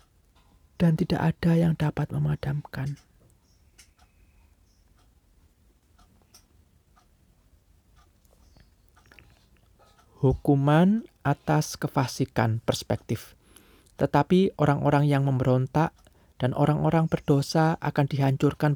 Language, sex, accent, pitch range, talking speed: Indonesian, male, native, 100-155 Hz, 60 wpm